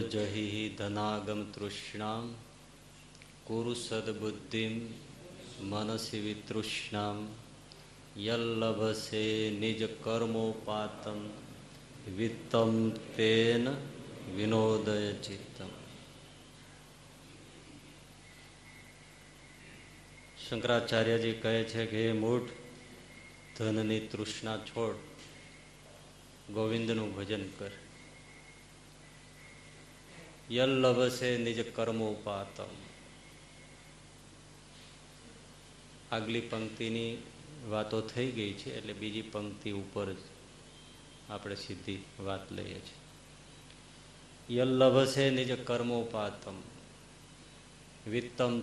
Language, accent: Gujarati, native